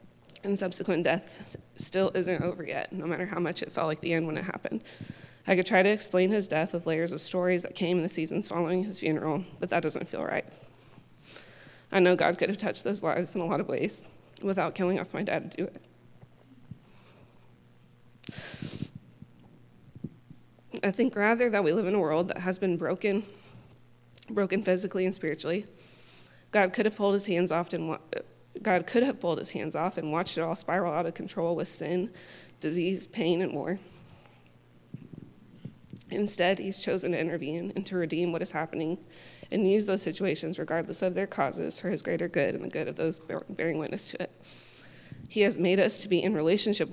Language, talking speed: English, 190 wpm